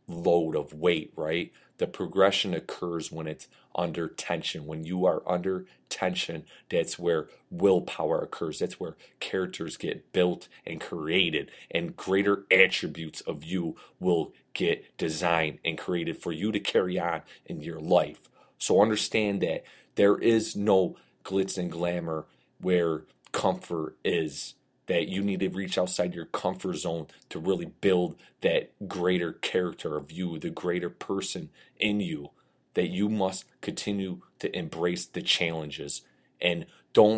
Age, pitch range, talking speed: 30-49, 80-95 Hz, 145 wpm